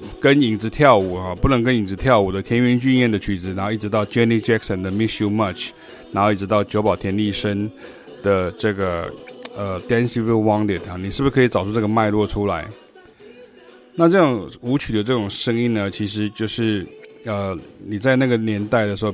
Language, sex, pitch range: Chinese, male, 100-120 Hz